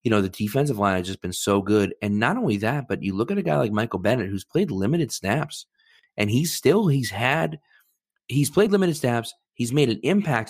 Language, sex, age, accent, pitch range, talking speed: English, male, 30-49, American, 105-145 Hz, 230 wpm